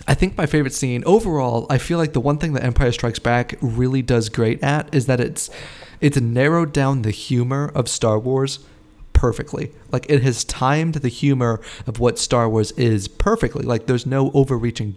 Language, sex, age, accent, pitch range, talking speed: English, male, 30-49, American, 115-135 Hz, 195 wpm